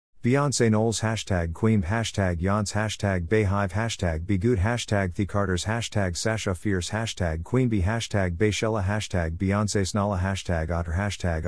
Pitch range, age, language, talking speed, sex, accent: 90-110 Hz, 50-69, English, 140 wpm, male, American